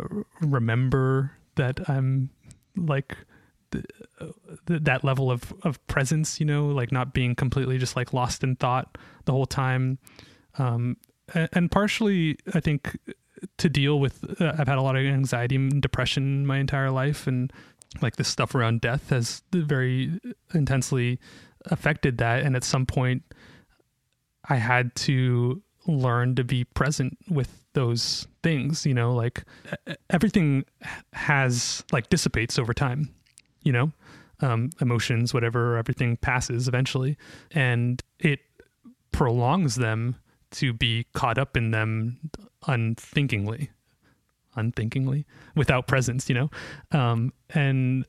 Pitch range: 125-145 Hz